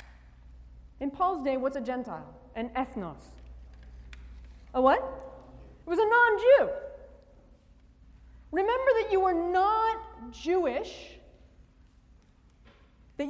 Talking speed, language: 95 wpm, English